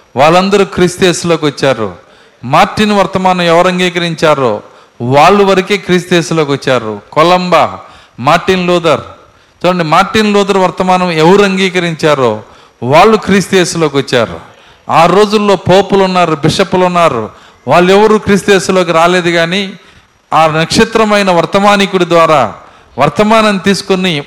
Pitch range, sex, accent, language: 160-200 Hz, male, native, Telugu